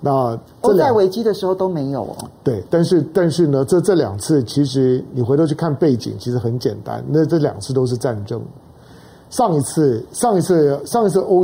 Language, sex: Chinese, male